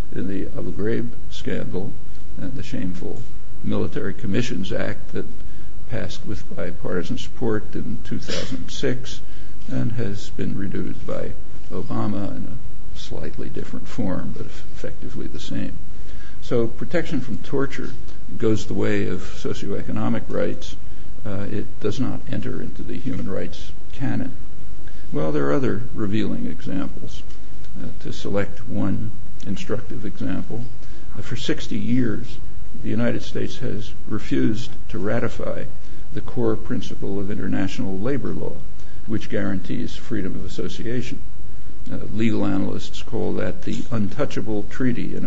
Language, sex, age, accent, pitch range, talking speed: English, male, 60-79, American, 95-115 Hz, 125 wpm